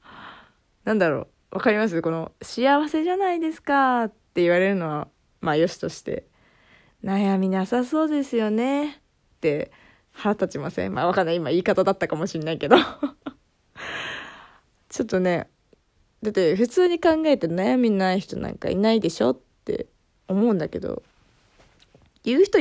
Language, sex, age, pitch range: Japanese, female, 20-39, 170-235 Hz